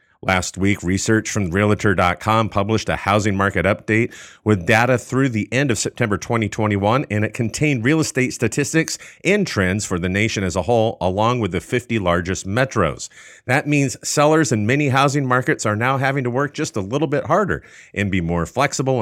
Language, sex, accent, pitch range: English, male, American, 100-125 Hz